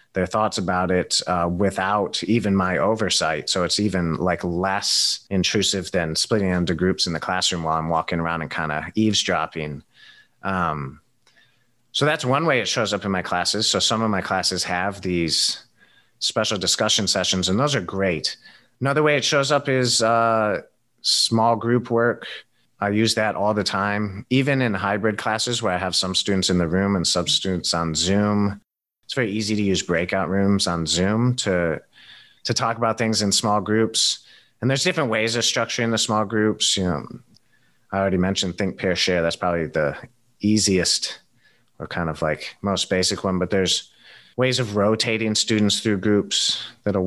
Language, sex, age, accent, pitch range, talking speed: English, male, 30-49, American, 90-110 Hz, 180 wpm